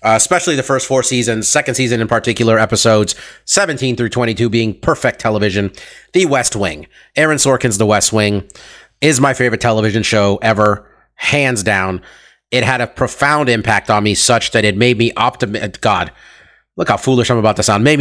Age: 30-49